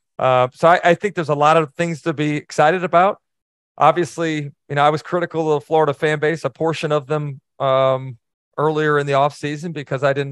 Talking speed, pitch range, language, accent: 220 wpm, 140-165 Hz, English, American